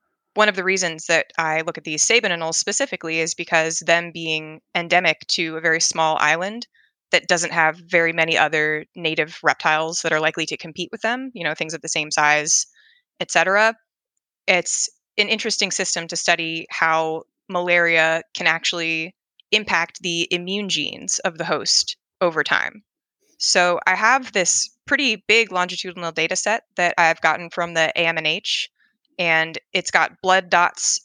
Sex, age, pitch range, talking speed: female, 20-39, 165-195 Hz, 160 wpm